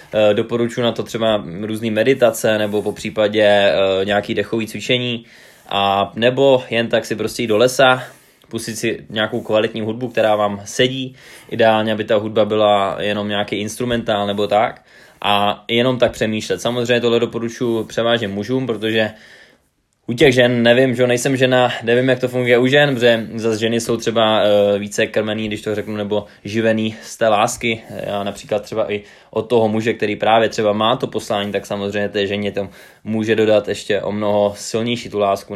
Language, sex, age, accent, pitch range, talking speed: Czech, male, 20-39, native, 105-120 Hz, 175 wpm